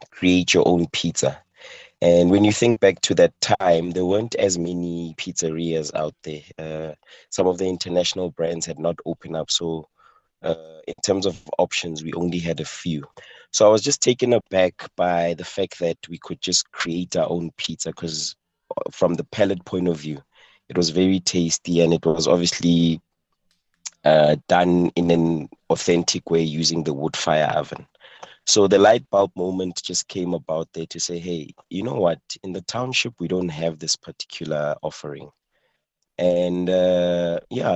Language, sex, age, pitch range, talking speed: English, male, 30-49, 80-95 Hz, 175 wpm